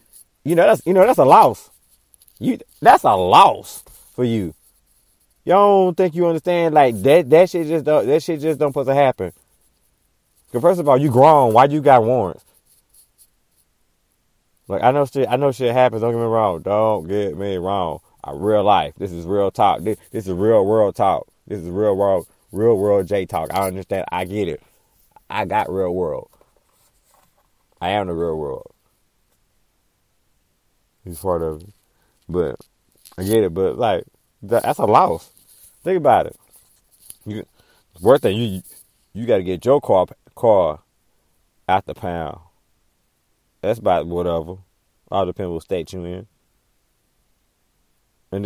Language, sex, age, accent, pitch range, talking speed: English, male, 30-49, American, 90-130 Hz, 165 wpm